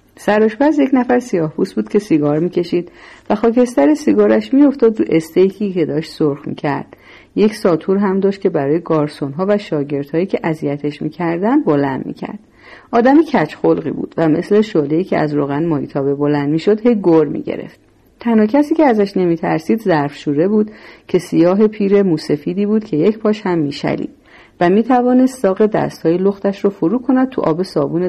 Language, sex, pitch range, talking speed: Persian, female, 155-230 Hz, 170 wpm